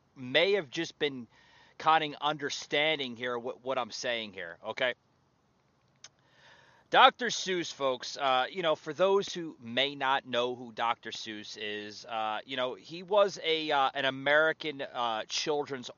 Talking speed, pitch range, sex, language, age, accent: 155 wpm, 135-185 Hz, male, English, 30-49, American